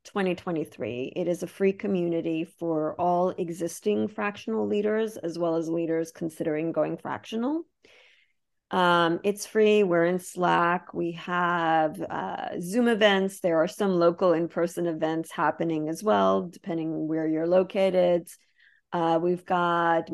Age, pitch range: 40-59, 165-185 Hz